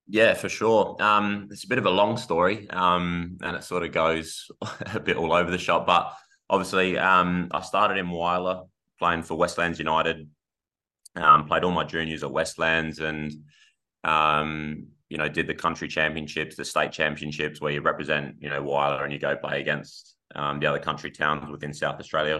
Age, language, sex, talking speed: 20-39, English, male, 190 wpm